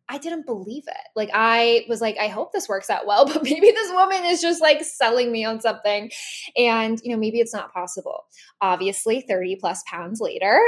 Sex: female